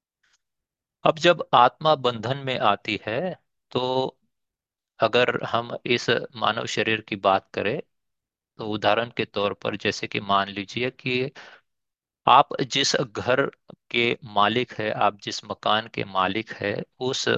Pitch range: 100-120 Hz